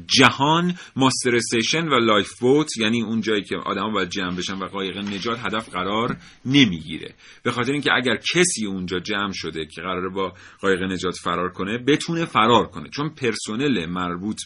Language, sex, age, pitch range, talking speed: Persian, male, 40-59, 95-115 Hz, 175 wpm